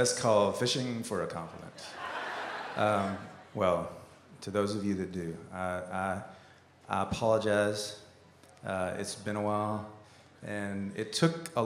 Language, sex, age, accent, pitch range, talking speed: English, male, 30-49, American, 90-110 Hz, 140 wpm